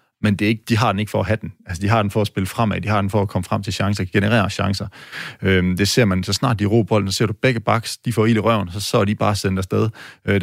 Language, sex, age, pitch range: Danish, male, 30-49, 95-115 Hz